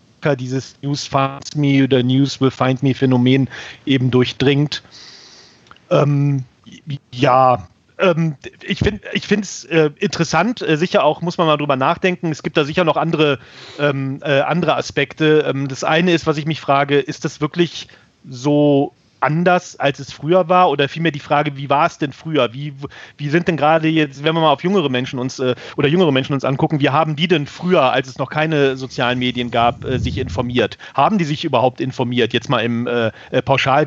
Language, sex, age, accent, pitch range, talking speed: English, male, 40-59, German, 130-155 Hz, 185 wpm